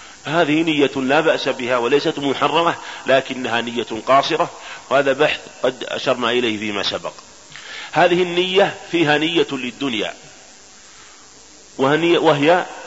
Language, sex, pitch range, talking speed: Arabic, male, 125-160 Hz, 105 wpm